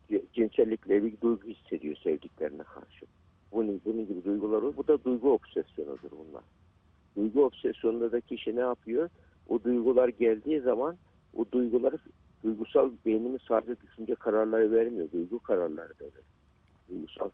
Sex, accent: male, native